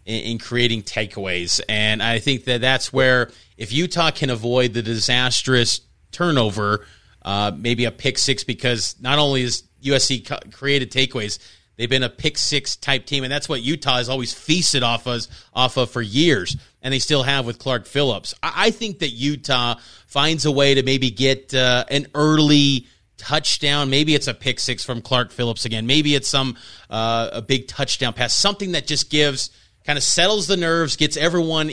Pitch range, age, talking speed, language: 120-150 Hz, 30-49, 185 wpm, English